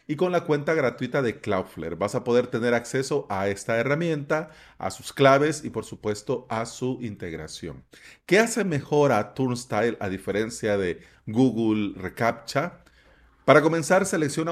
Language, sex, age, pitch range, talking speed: Spanish, male, 40-59, 115-155 Hz, 155 wpm